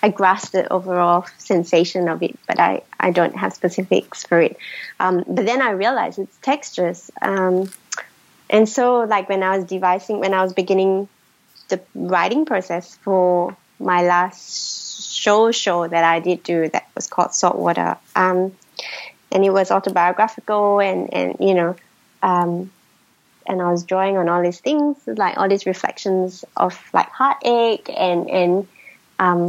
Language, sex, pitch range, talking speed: English, female, 175-205 Hz, 160 wpm